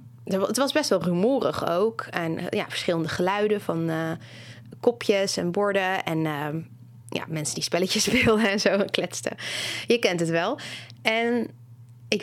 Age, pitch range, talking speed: 20-39, 150-230 Hz, 155 wpm